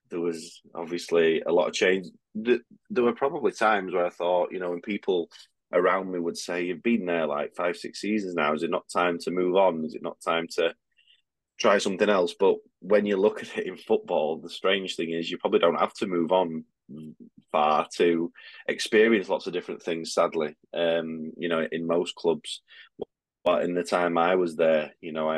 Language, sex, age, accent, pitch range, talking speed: English, male, 20-39, British, 80-95 Hz, 210 wpm